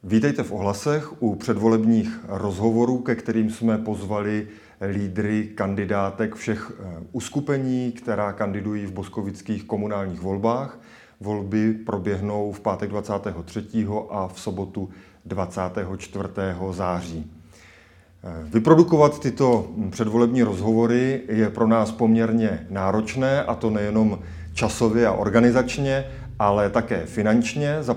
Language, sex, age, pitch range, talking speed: Czech, male, 30-49, 100-115 Hz, 105 wpm